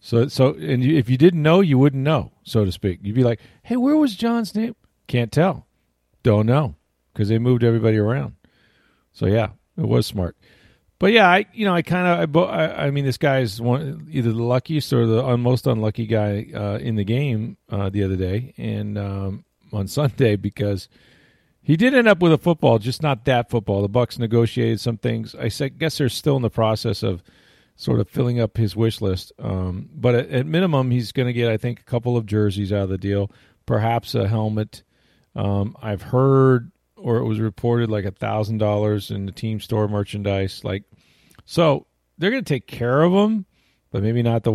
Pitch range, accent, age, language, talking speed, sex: 105-140 Hz, American, 40-59, English, 205 wpm, male